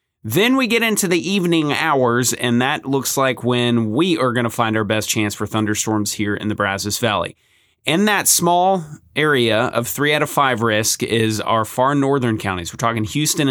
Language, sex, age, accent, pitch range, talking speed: English, male, 30-49, American, 110-145 Hz, 200 wpm